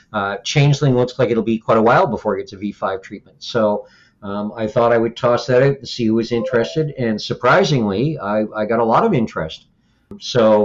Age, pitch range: 50-69, 105-125 Hz